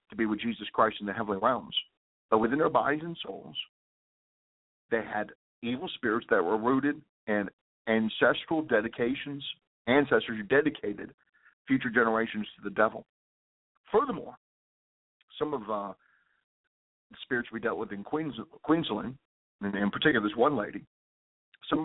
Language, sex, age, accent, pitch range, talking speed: English, male, 50-69, American, 110-155 Hz, 140 wpm